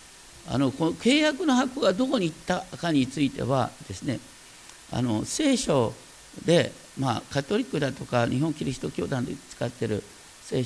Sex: male